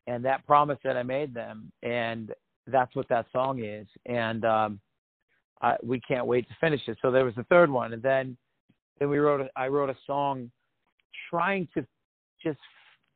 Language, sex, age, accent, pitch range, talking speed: English, male, 50-69, American, 115-130 Hz, 170 wpm